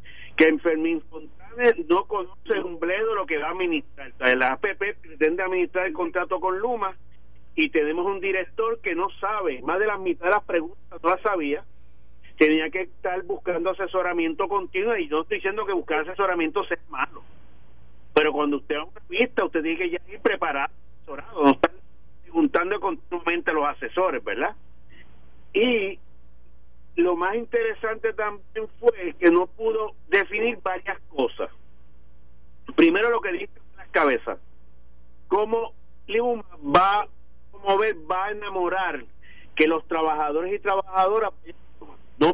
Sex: male